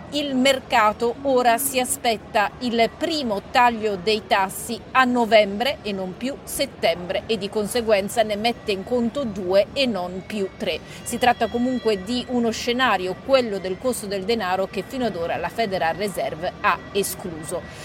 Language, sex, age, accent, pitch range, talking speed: Italian, female, 40-59, native, 205-245 Hz, 160 wpm